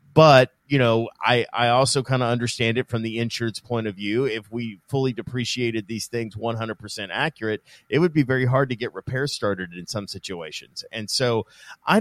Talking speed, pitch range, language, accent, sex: 195 wpm, 110-135 Hz, English, American, male